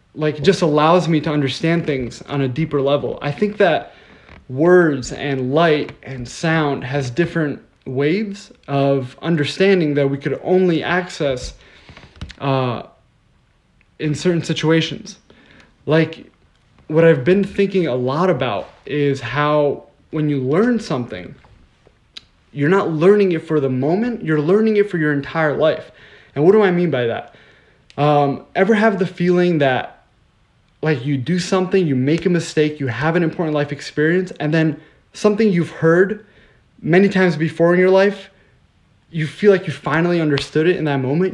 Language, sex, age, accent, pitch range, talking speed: English, male, 20-39, American, 145-180 Hz, 160 wpm